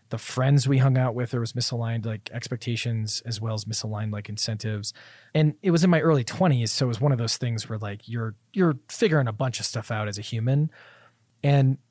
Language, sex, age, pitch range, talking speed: English, male, 30-49, 110-145 Hz, 225 wpm